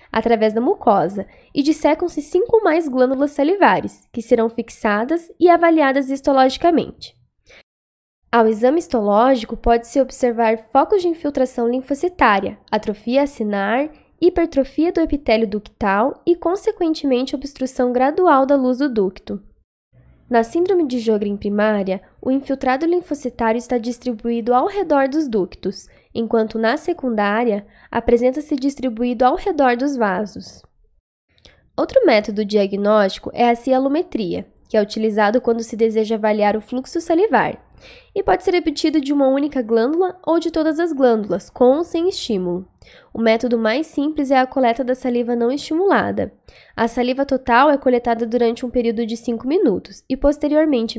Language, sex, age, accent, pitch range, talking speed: Portuguese, female, 10-29, Brazilian, 225-290 Hz, 140 wpm